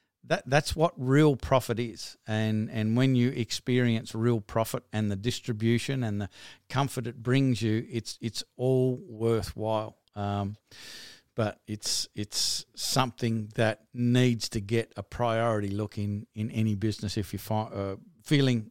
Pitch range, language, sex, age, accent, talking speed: 115-145 Hz, English, male, 50-69, Australian, 150 wpm